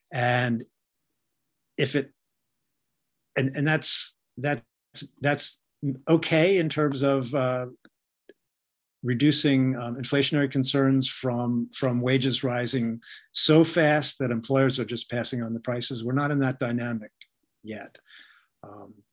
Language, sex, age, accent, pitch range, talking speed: English, male, 50-69, American, 120-140 Hz, 120 wpm